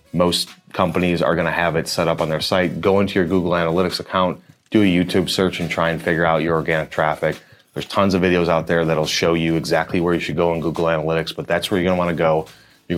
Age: 30-49